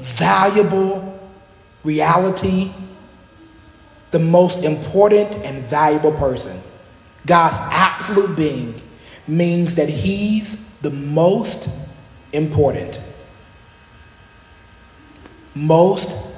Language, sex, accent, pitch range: English, male, American, 105-170 Hz